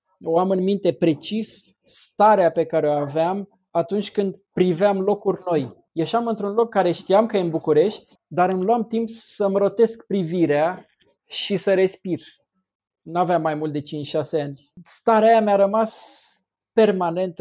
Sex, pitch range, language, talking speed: male, 155-195 Hz, Romanian, 160 wpm